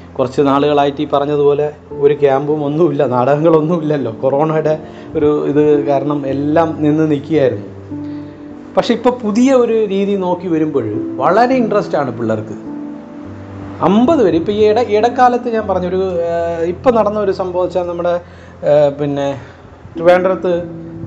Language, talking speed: Malayalam, 115 wpm